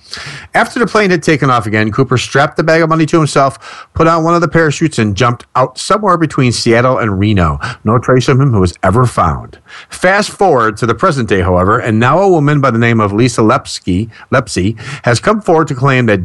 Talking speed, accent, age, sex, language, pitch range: 225 wpm, American, 40-59, male, English, 110-150 Hz